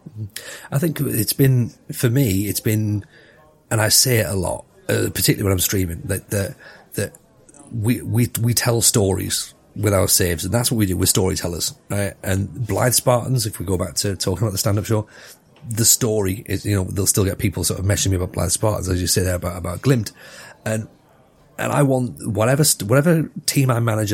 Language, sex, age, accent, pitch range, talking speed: English, male, 30-49, British, 95-120 Hz, 210 wpm